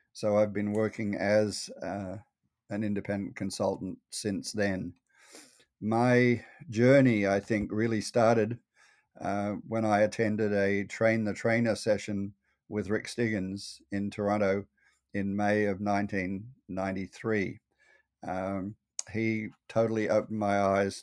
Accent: Australian